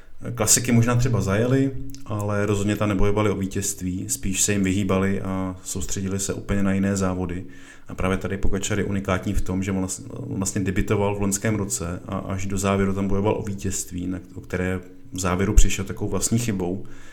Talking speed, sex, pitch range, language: 180 wpm, male, 95-100 Hz, Czech